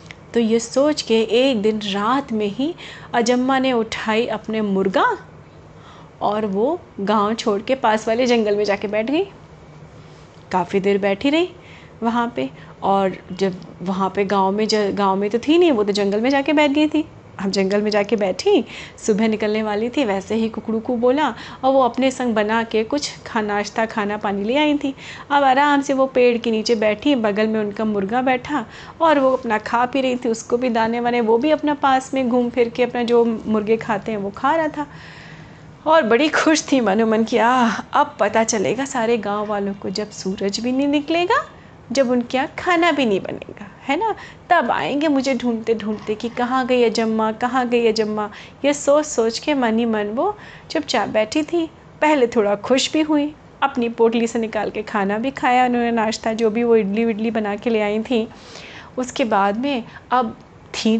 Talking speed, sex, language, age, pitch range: 200 wpm, female, Hindi, 30-49, 215-270 Hz